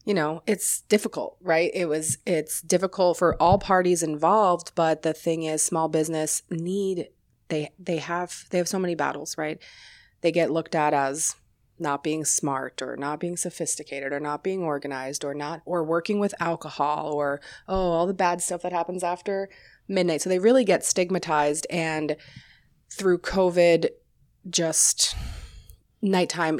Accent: American